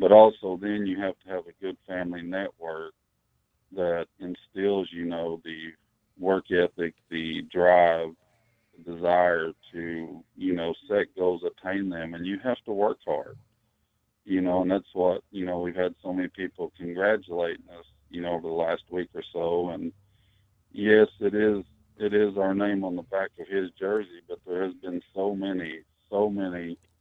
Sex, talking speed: male, 175 wpm